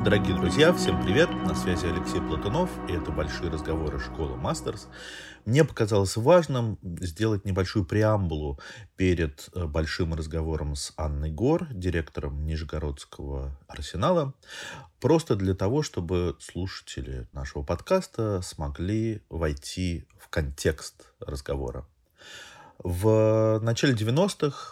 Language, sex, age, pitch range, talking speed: Russian, male, 30-49, 75-110 Hz, 105 wpm